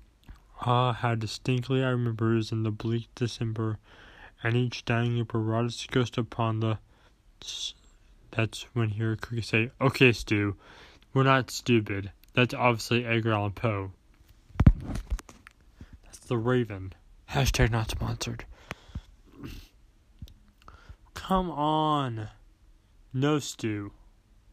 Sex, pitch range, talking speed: male, 105-125 Hz, 115 wpm